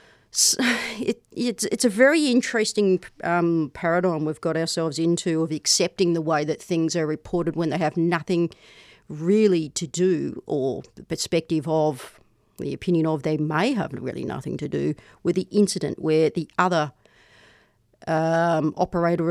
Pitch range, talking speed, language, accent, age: 155-185 Hz, 155 wpm, English, Australian, 40-59